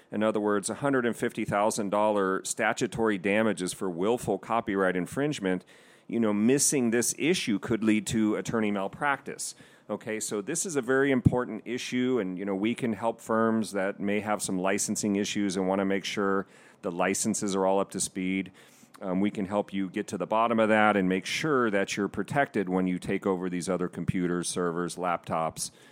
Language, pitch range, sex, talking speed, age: English, 95-115 Hz, male, 195 wpm, 40-59